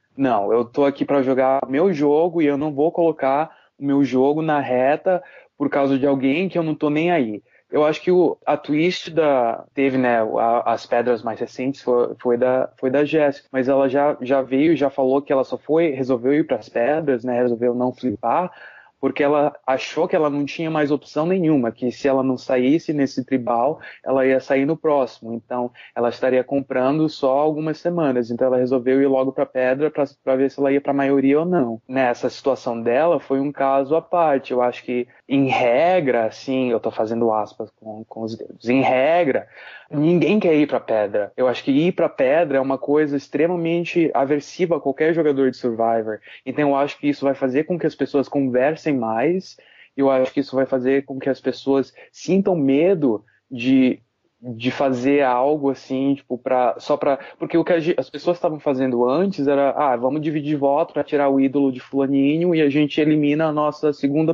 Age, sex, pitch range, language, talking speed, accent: 20-39, male, 130-150 Hz, Portuguese, 205 wpm, Brazilian